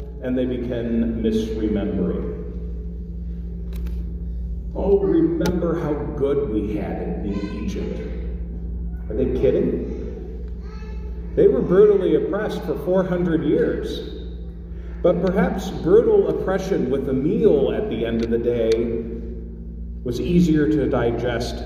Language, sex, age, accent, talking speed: English, male, 40-59, American, 110 wpm